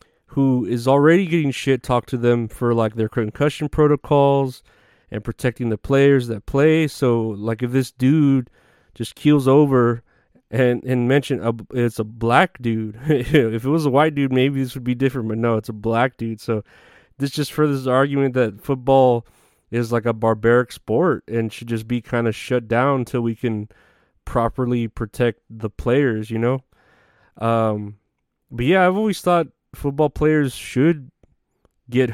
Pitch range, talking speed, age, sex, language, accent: 115-135 Hz, 170 wpm, 30-49, male, English, American